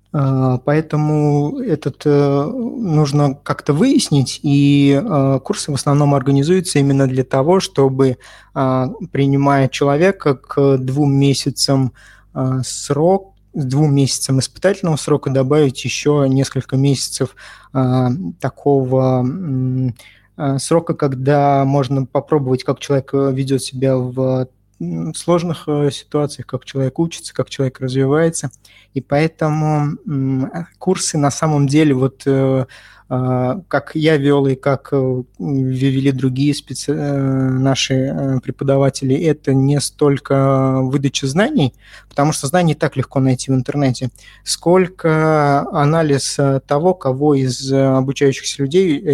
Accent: native